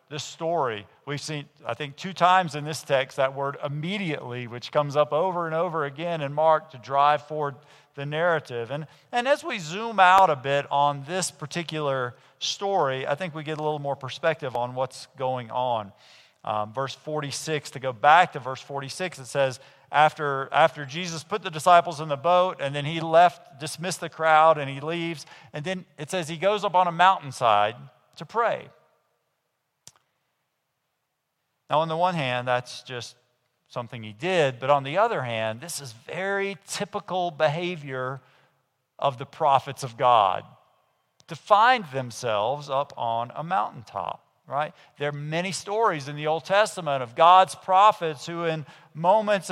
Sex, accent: male, American